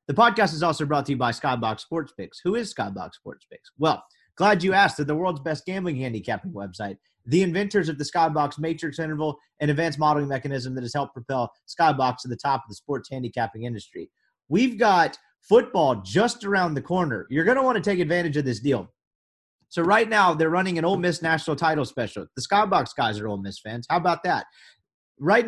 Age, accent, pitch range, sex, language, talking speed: 30-49, American, 125-180 Hz, male, English, 210 wpm